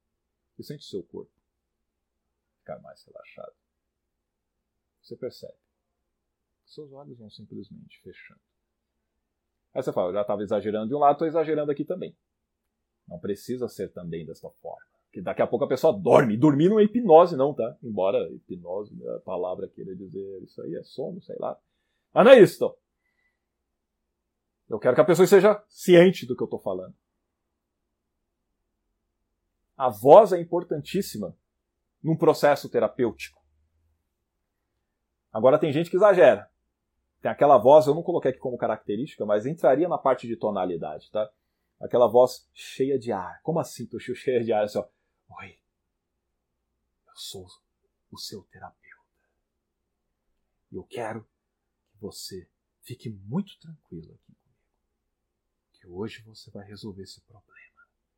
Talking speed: 140 wpm